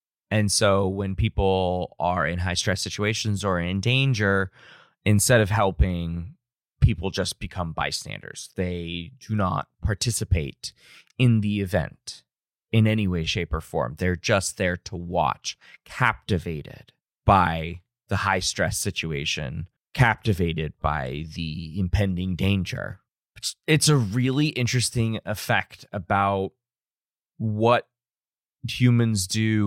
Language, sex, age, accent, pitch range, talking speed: English, male, 20-39, American, 95-115 Hz, 115 wpm